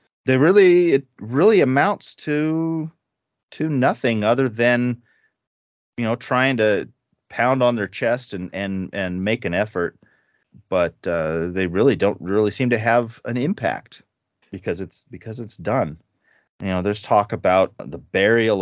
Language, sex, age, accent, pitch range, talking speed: English, male, 30-49, American, 90-115 Hz, 150 wpm